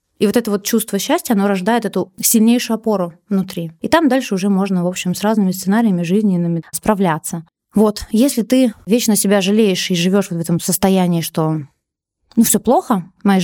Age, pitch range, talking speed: 20-39, 180-225 Hz, 185 wpm